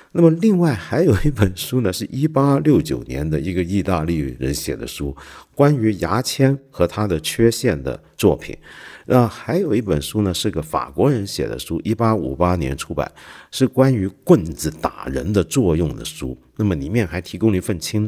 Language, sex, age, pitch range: Chinese, male, 50-69, 75-120 Hz